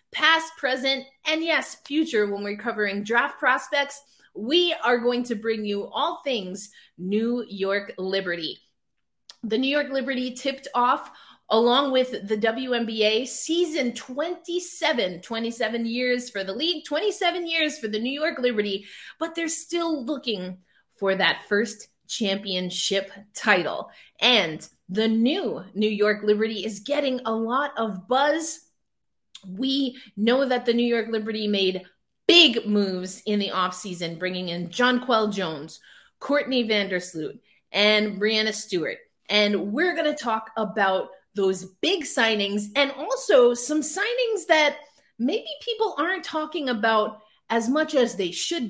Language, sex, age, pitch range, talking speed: English, female, 30-49, 210-290 Hz, 140 wpm